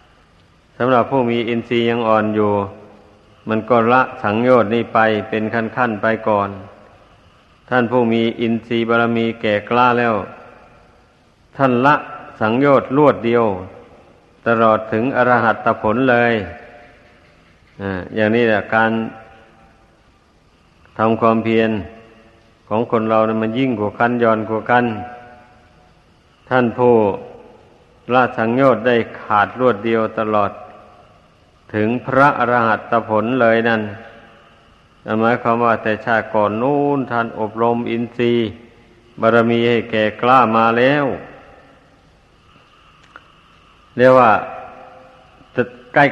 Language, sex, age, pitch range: Thai, male, 60-79, 110-120 Hz